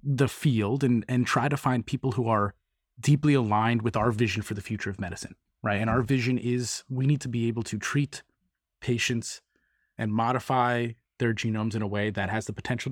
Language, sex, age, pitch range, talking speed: English, male, 30-49, 115-140 Hz, 205 wpm